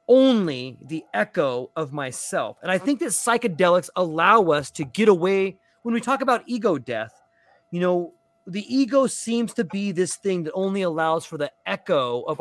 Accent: American